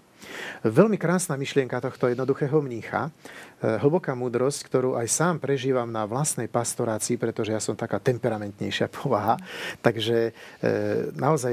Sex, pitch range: male, 110-140 Hz